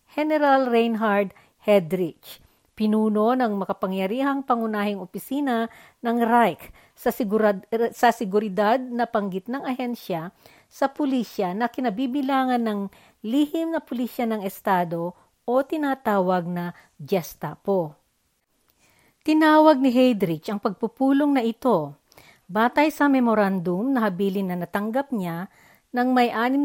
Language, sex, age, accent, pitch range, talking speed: Filipino, female, 40-59, native, 195-260 Hz, 115 wpm